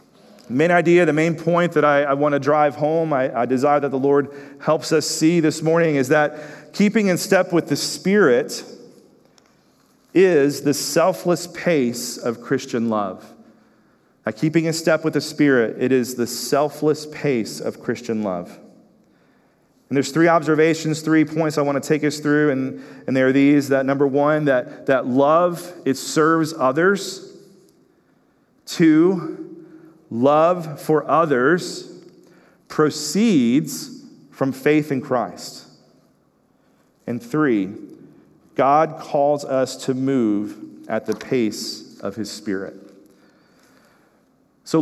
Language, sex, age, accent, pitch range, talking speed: English, male, 40-59, American, 135-170 Hz, 135 wpm